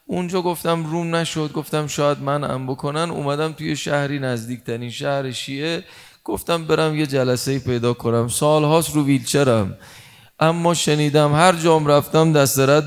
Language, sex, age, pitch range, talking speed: Persian, male, 30-49, 140-170 Hz, 150 wpm